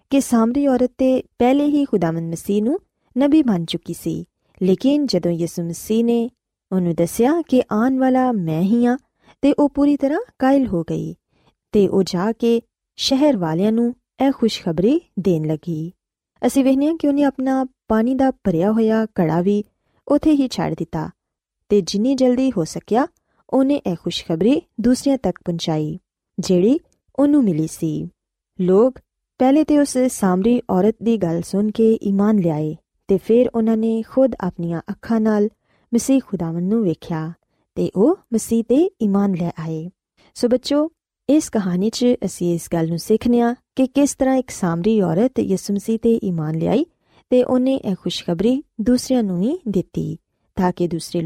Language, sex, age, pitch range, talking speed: Punjabi, female, 20-39, 180-255 Hz, 165 wpm